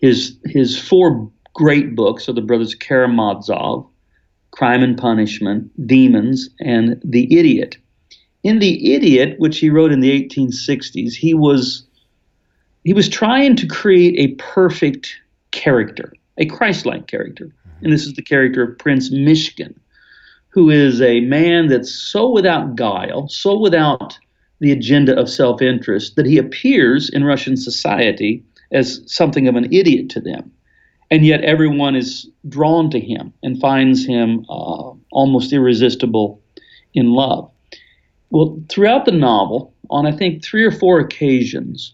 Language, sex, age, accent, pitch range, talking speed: English, male, 50-69, American, 125-165 Hz, 140 wpm